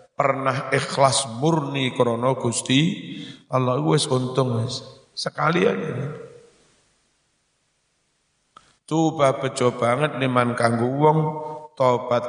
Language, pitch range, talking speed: Indonesian, 115-135 Hz, 85 wpm